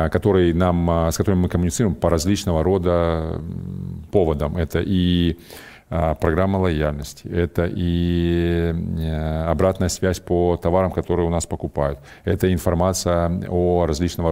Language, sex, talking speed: Russian, male, 115 wpm